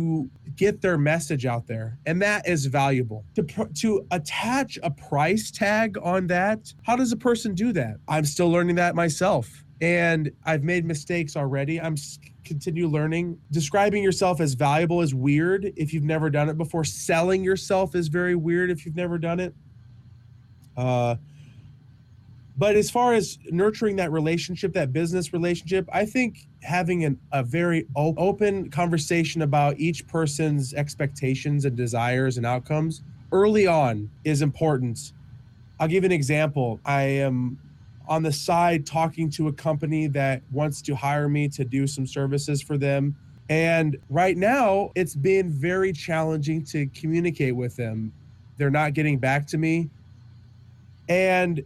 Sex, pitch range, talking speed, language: male, 140-180 Hz, 155 wpm, English